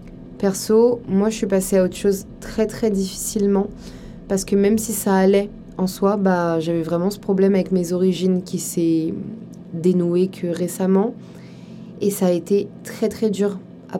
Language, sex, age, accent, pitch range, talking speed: French, female, 20-39, French, 185-215 Hz, 170 wpm